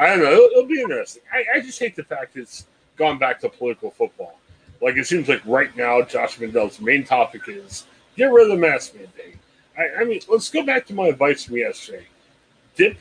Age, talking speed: 40-59, 210 wpm